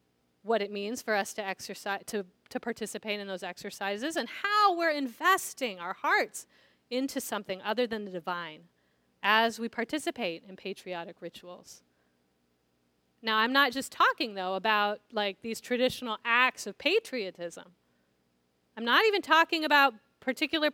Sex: female